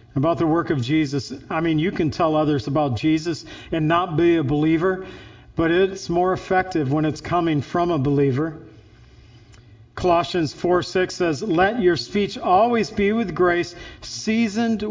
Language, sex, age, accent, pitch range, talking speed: English, male, 50-69, American, 120-180 Hz, 155 wpm